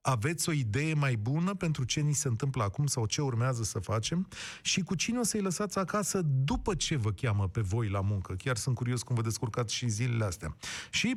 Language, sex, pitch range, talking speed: Romanian, male, 120-170 Hz, 220 wpm